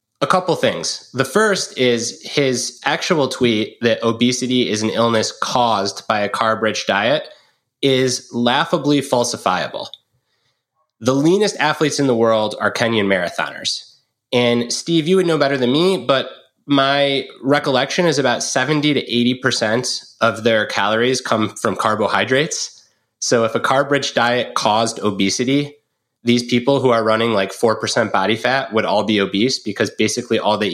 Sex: male